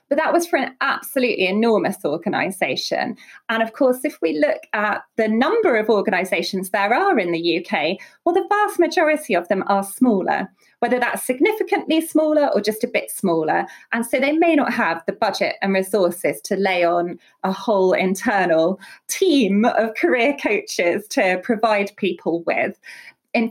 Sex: female